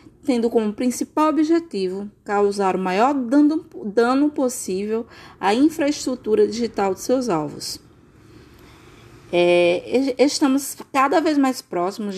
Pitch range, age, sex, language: 185-255 Hz, 20-39, female, Portuguese